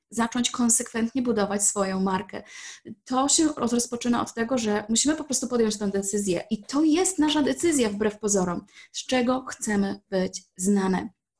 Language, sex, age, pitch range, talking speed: Polish, female, 20-39, 200-240 Hz, 155 wpm